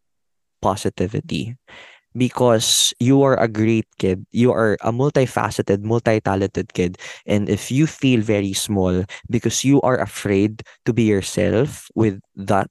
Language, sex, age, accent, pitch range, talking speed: Filipino, male, 20-39, native, 105-175 Hz, 135 wpm